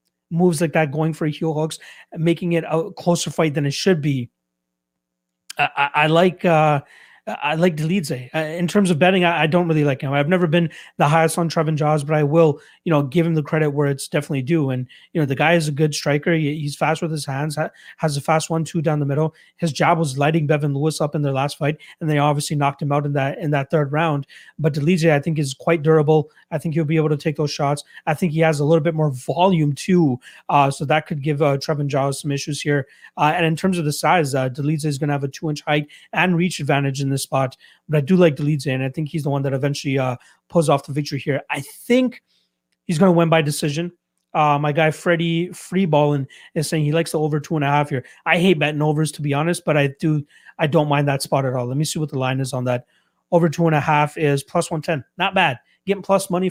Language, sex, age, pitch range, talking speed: English, male, 30-49, 145-165 Hz, 255 wpm